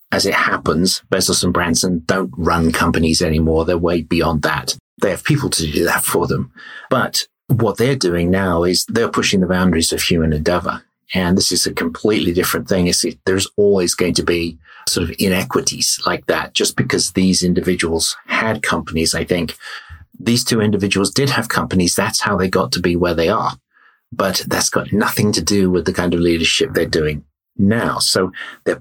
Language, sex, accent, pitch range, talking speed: English, male, British, 90-115 Hz, 190 wpm